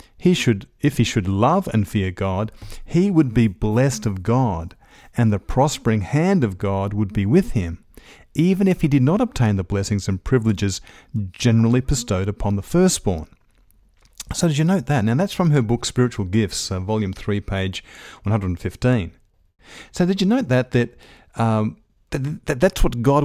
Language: English